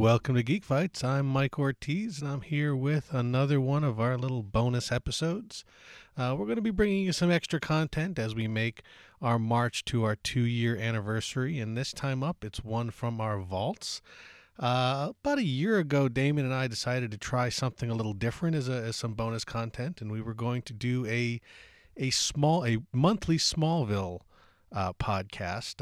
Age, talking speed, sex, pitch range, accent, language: 40-59, 190 wpm, male, 110-140 Hz, American, English